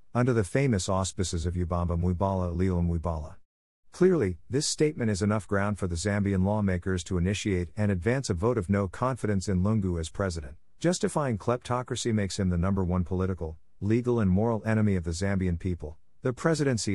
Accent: American